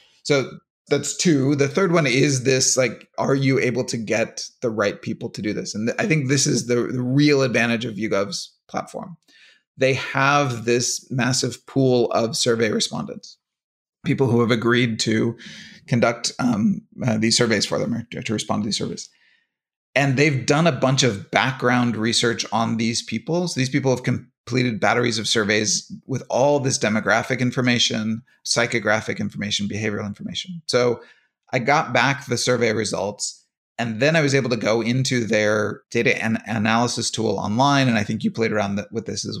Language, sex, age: English, male, 30-49